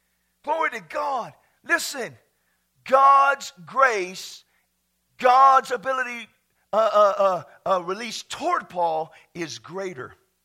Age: 50-69